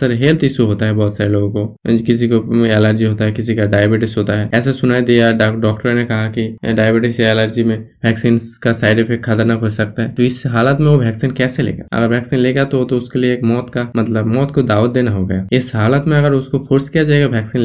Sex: male